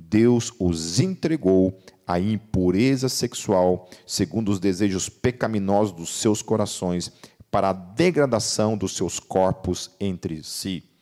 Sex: male